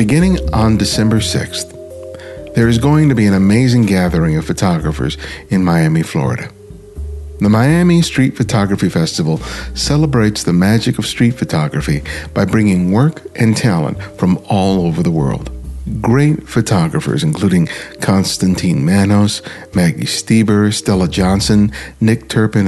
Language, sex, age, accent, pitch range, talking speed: English, male, 50-69, American, 95-125 Hz, 130 wpm